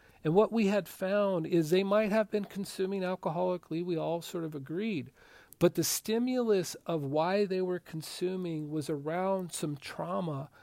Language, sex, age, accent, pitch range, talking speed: English, male, 40-59, American, 140-180 Hz, 165 wpm